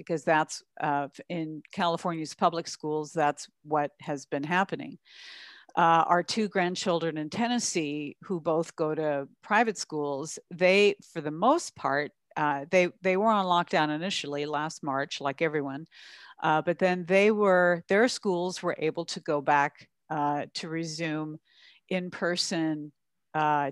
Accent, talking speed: American, 145 wpm